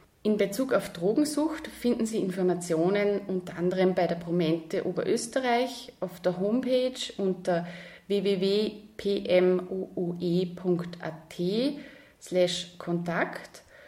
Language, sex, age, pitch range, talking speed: German, female, 30-49, 185-235 Hz, 80 wpm